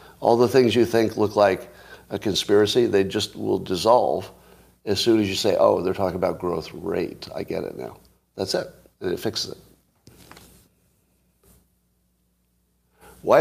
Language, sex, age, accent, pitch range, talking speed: English, male, 50-69, American, 75-110 Hz, 155 wpm